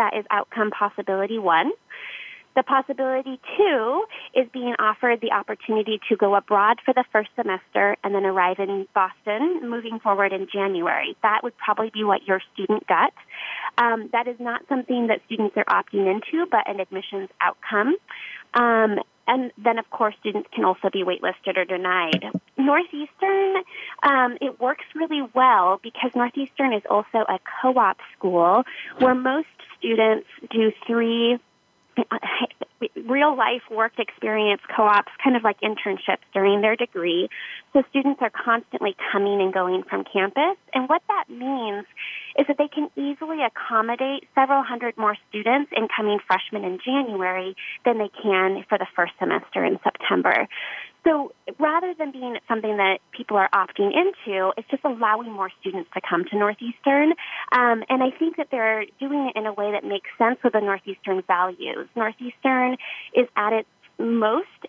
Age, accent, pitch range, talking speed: 20-39, American, 200-265 Hz, 160 wpm